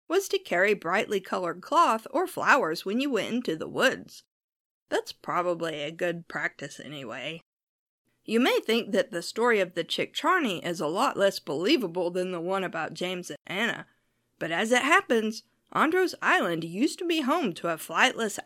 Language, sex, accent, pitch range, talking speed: English, female, American, 175-265 Hz, 180 wpm